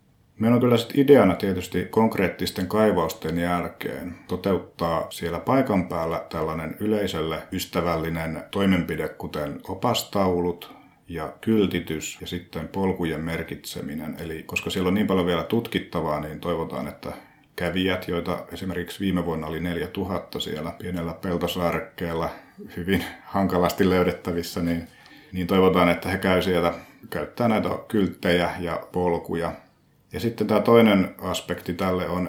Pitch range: 85-95 Hz